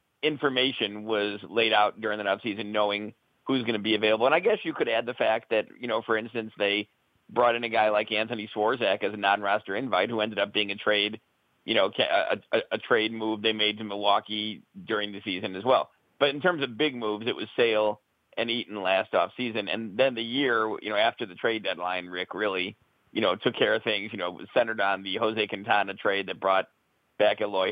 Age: 40-59